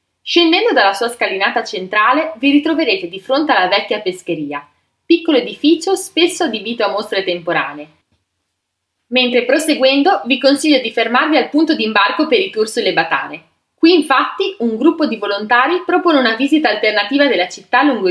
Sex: female